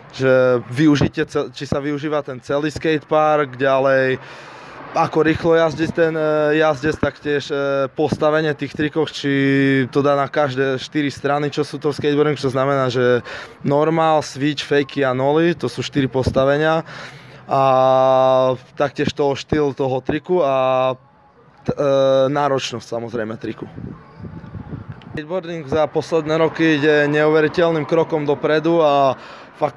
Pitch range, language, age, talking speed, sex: 140-160 Hz, Slovak, 20-39, 125 wpm, male